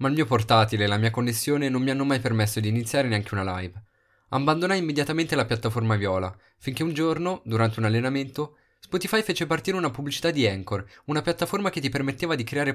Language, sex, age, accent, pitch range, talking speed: Italian, male, 20-39, native, 110-160 Hz, 200 wpm